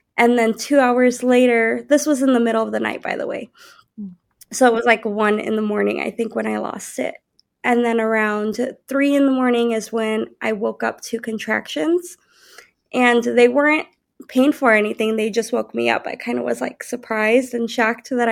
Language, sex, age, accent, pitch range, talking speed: English, female, 20-39, American, 220-260 Hz, 210 wpm